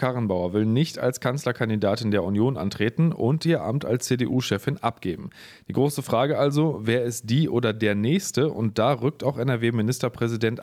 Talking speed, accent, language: 165 wpm, German, German